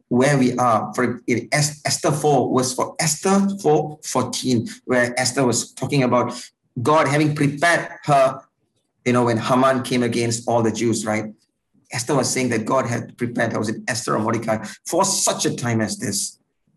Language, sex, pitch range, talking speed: English, male, 110-135 Hz, 175 wpm